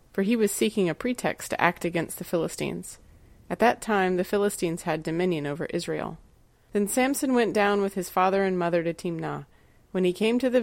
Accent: American